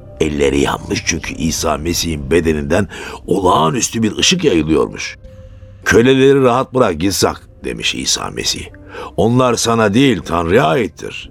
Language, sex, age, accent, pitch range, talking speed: Turkish, male, 60-79, native, 90-130 Hz, 115 wpm